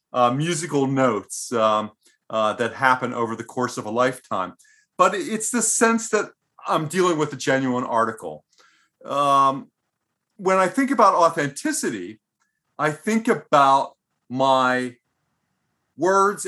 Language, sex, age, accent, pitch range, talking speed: English, male, 40-59, American, 125-155 Hz, 125 wpm